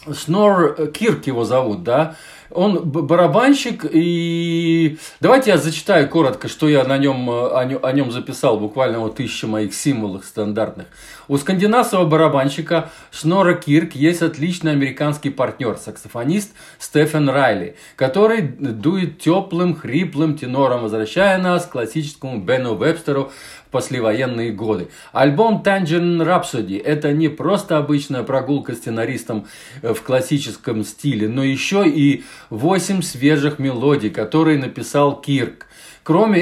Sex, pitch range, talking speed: male, 130-170 Hz, 120 wpm